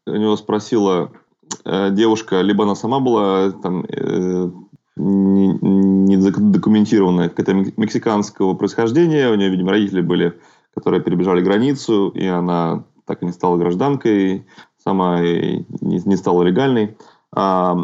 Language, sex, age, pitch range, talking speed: Russian, male, 20-39, 95-115 Hz, 120 wpm